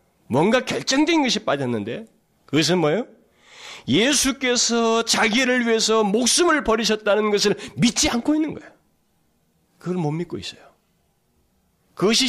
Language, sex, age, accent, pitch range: Korean, male, 40-59, native, 190-285 Hz